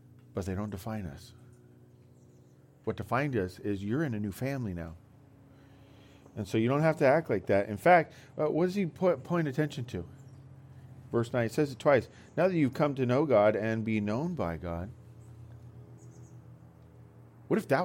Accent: American